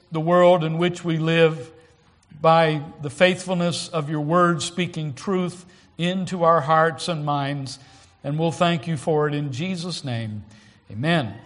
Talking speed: 150 wpm